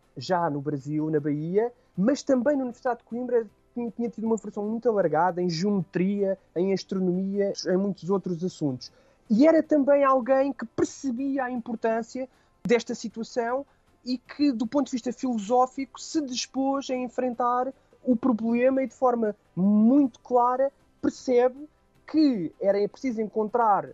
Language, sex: Portuguese, male